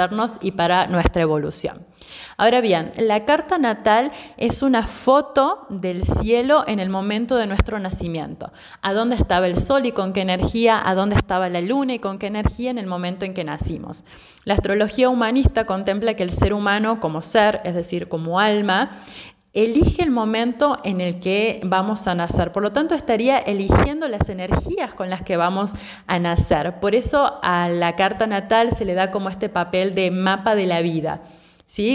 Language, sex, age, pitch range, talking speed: Spanish, female, 20-39, 185-230 Hz, 185 wpm